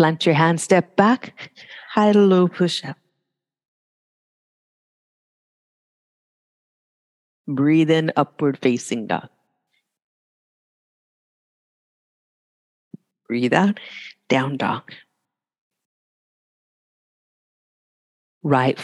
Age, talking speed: 50-69, 60 wpm